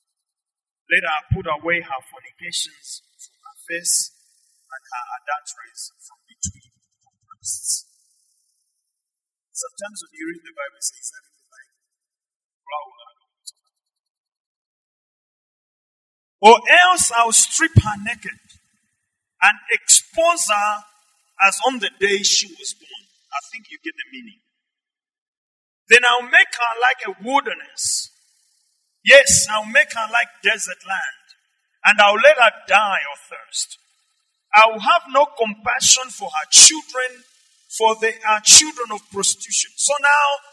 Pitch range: 210-345 Hz